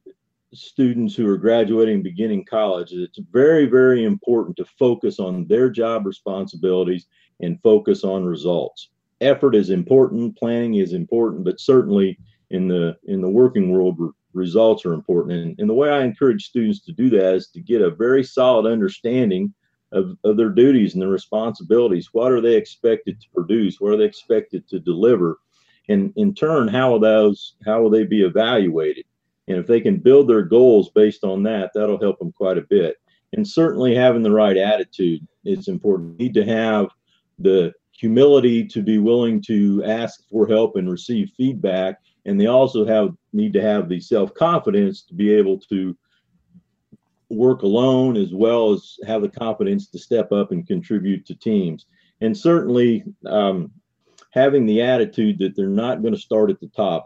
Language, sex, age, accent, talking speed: English, male, 50-69, American, 175 wpm